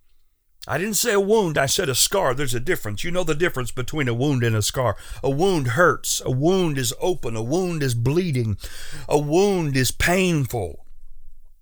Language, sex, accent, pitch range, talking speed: English, male, American, 105-160 Hz, 190 wpm